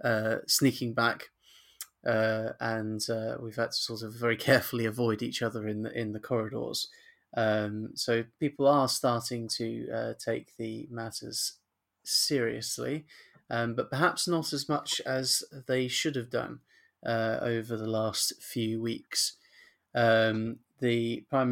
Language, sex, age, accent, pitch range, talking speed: English, male, 30-49, British, 115-130 Hz, 140 wpm